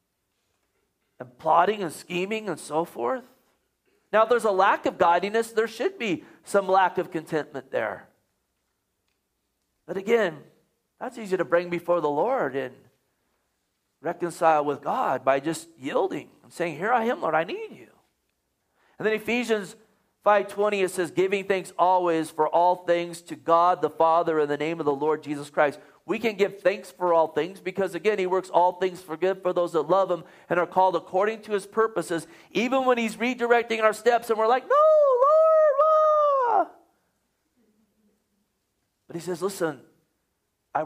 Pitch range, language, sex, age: 160-220 Hz, English, male, 40-59